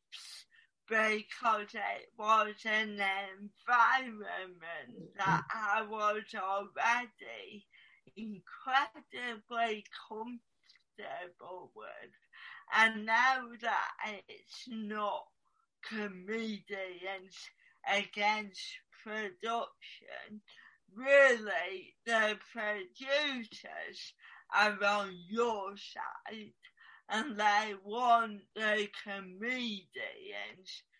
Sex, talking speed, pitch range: female, 60 wpm, 200-245 Hz